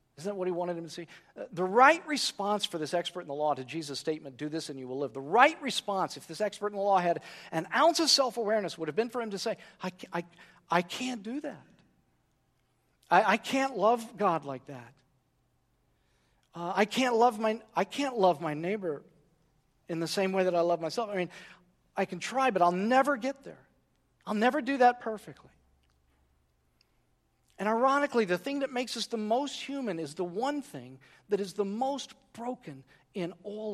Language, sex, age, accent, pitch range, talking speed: English, male, 50-69, American, 150-230 Hz, 195 wpm